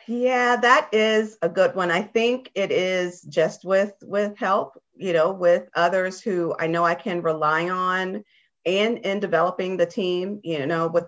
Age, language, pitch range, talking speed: 40-59, English, 150-190 Hz, 180 wpm